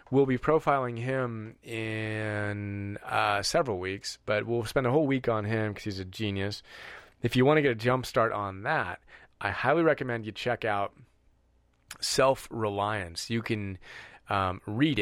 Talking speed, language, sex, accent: 165 wpm, English, male, American